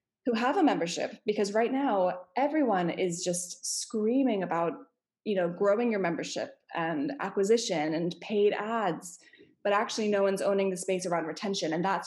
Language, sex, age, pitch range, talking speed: English, female, 20-39, 180-220 Hz, 165 wpm